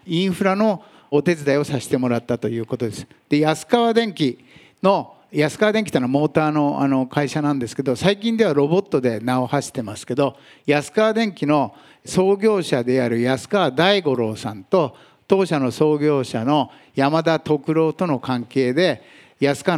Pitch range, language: 130-165 Hz, Japanese